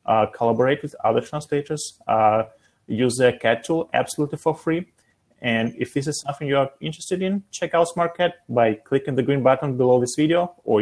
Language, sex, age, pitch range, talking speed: English, male, 30-49, 115-155 Hz, 190 wpm